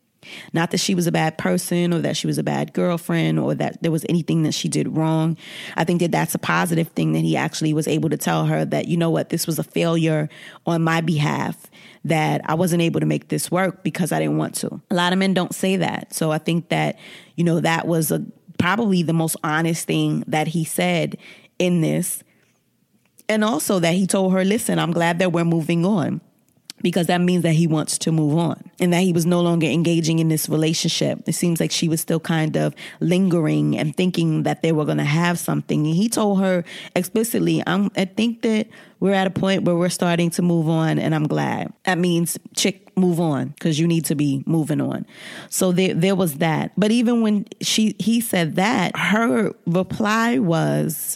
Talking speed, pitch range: 215 wpm, 160-190 Hz